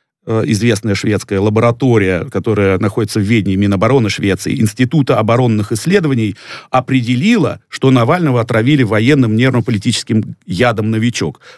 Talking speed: 110 wpm